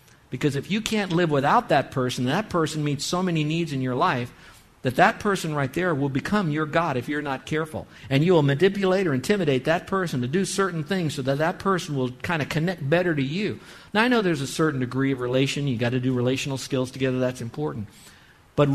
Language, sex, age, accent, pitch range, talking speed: English, male, 50-69, American, 130-180 Hz, 230 wpm